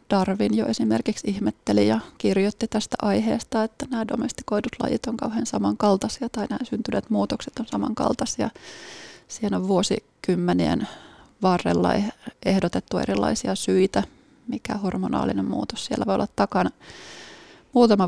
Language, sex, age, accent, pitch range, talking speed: Finnish, female, 20-39, native, 180-240 Hz, 120 wpm